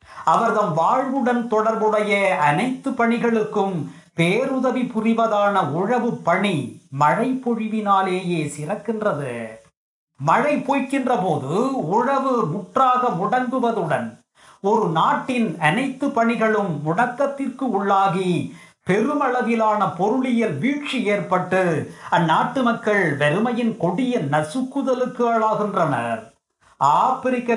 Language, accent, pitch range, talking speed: Tamil, native, 170-245 Hz, 75 wpm